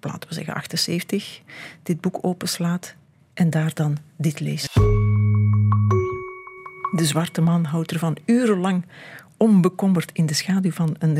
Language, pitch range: Dutch, 155-190 Hz